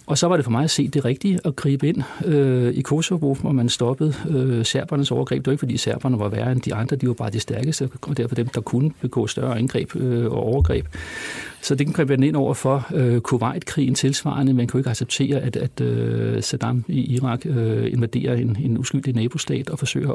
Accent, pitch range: native, 120-145 Hz